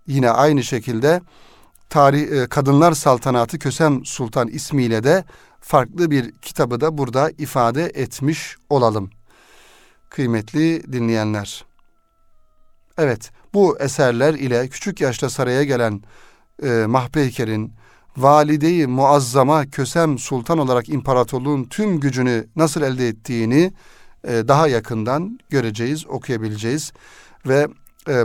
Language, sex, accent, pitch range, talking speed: Turkish, male, native, 115-150 Hz, 100 wpm